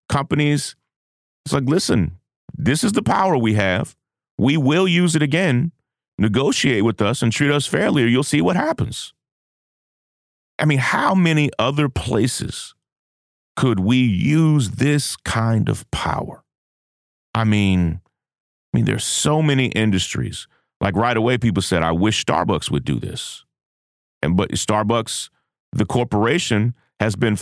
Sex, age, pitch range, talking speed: male, 40-59, 110-150 Hz, 145 wpm